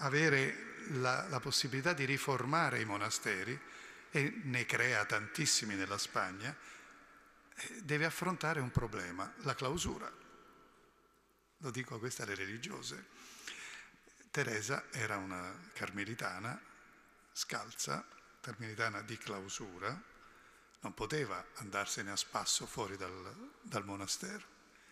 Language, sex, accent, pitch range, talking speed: Italian, male, native, 100-145 Hz, 100 wpm